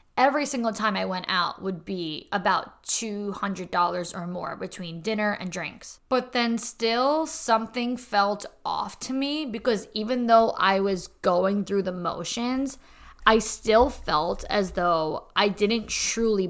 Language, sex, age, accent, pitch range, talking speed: English, female, 20-39, American, 185-230 Hz, 150 wpm